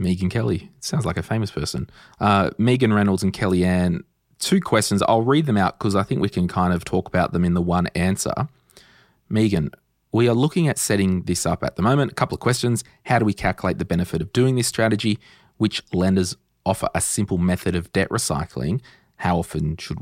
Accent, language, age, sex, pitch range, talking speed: Australian, English, 20-39, male, 90-110 Hz, 210 wpm